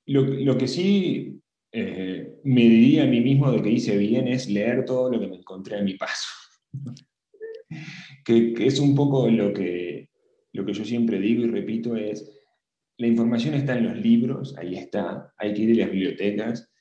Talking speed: 185 wpm